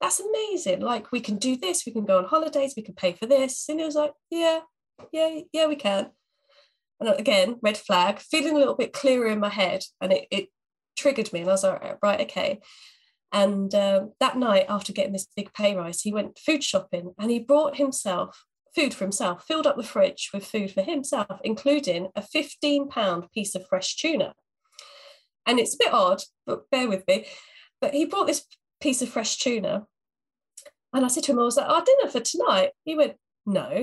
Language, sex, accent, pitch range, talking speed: English, female, British, 195-285 Hz, 210 wpm